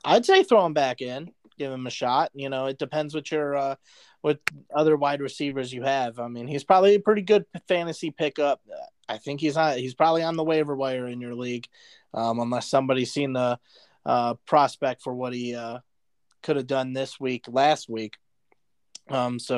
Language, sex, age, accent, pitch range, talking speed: English, male, 30-49, American, 120-155 Hz, 200 wpm